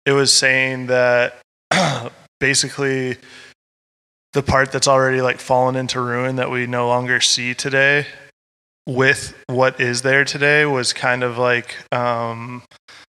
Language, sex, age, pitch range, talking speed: English, male, 20-39, 115-130 Hz, 130 wpm